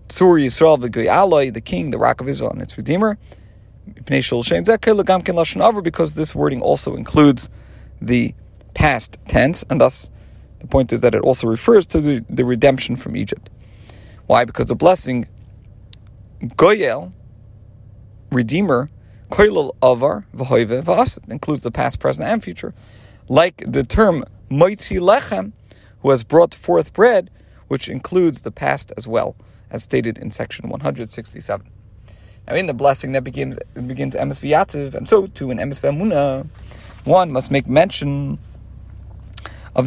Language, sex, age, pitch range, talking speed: English, male, 40-59, 105-150 Hz, 130 wpm